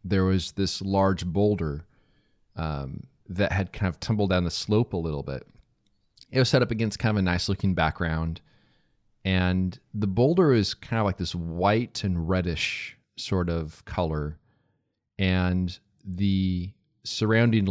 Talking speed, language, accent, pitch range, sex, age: 155 wpm, English, American, 90-110 Hz, male, 30-49